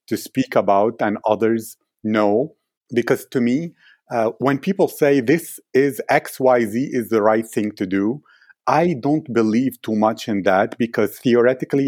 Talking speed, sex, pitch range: 155 wpm, male, 105-120 Hz